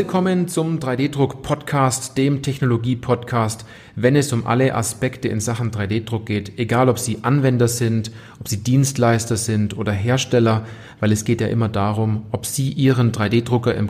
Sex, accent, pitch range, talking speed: male, German, 110-135 Hz, 175 wpm